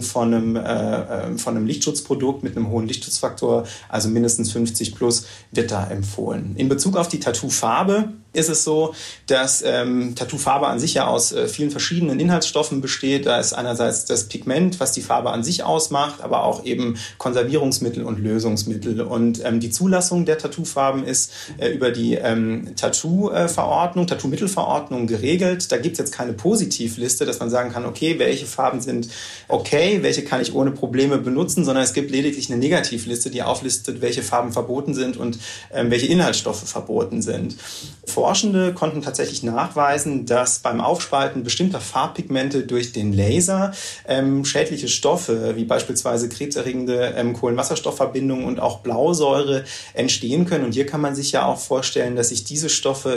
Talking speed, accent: 165 wpm, German